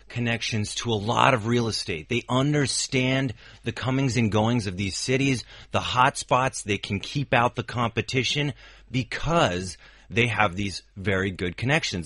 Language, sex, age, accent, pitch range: Chinese, male, 30-49, American, 100-135 Hz